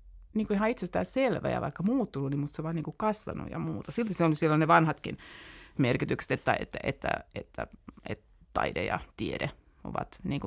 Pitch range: 145-180 Hz